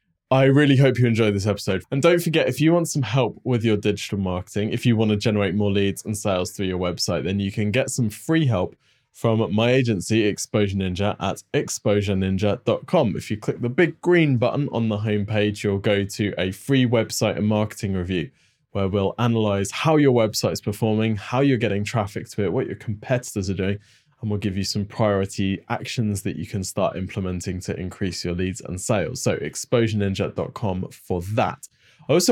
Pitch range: 100-130 Hz